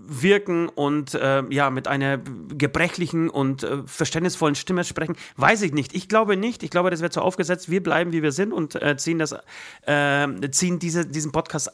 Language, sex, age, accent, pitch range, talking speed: German, male, 30-49, German, 130-170 Hz, 195 wpm